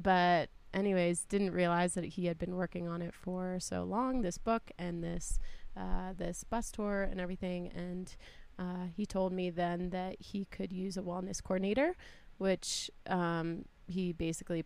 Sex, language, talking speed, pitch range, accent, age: female, English, 170 wpm, 175-200 Hz, American, 20-39